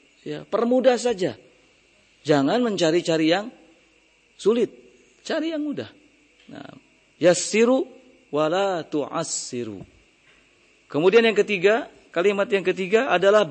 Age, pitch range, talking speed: 40-59, 150-215 Hz, 95 wpm